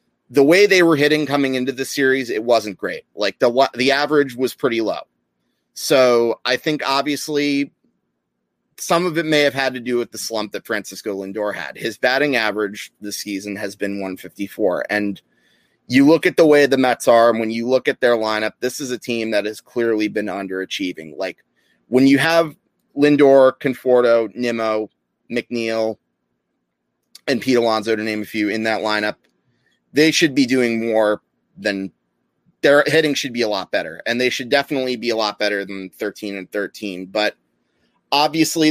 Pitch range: 110-140 Hz